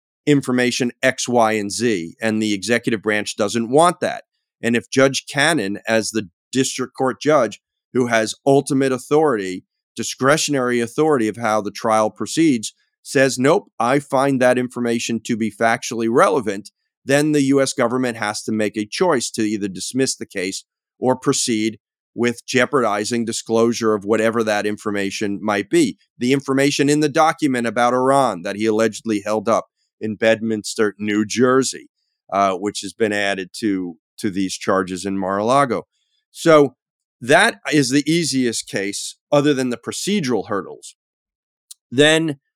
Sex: male